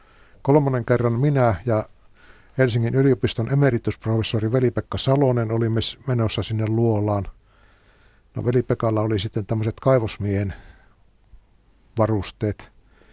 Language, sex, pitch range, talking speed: Finnish, male, 100-120 Hz, 90 wpm